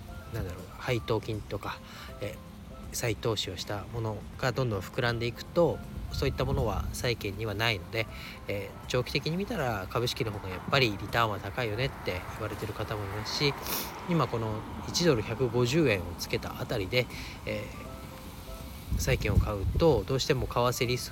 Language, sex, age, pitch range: Japanese, male, 40-59, 95-120 Hz